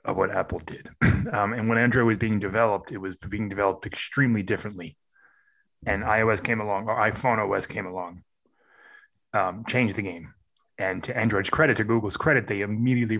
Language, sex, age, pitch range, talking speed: English, male, 20-39, 105-125 Hz, 175 wpm